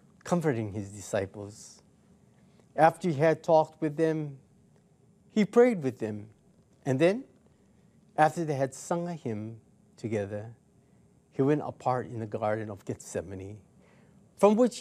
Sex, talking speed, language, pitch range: male, 130 wpm, English, 115-165 Hz